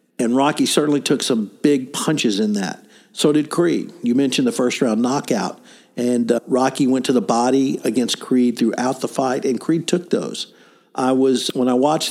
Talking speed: 195 wpm